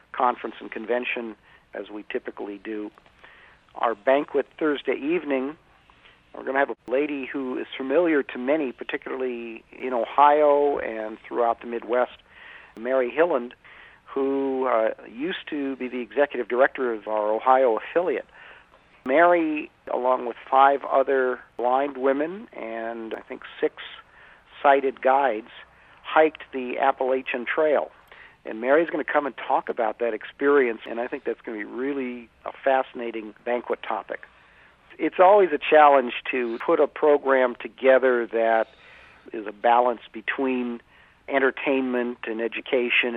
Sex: male